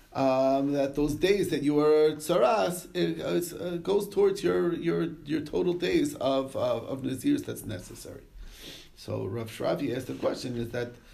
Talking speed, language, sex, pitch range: 170 wpm, English, male, 125-155 Hz